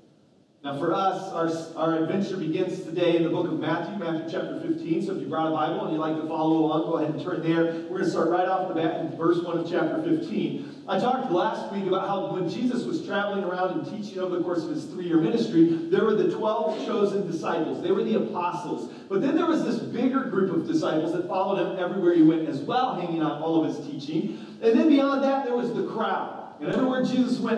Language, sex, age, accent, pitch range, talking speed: English, male, 40-59, American, 170-235 Hz, 245 wpm